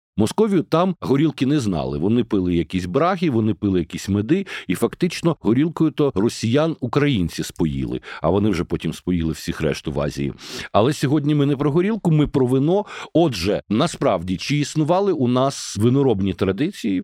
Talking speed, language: 155 wpm, Ukrainian